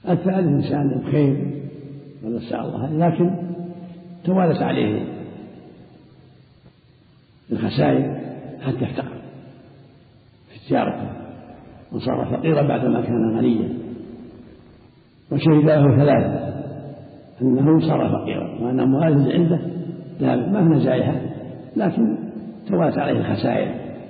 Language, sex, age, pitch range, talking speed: Arabic, male, 60-79, 125-165 Hz, 85 wpm